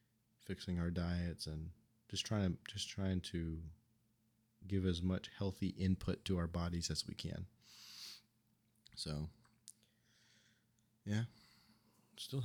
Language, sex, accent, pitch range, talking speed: English, male, American, 90-110 Hz, 115 wpm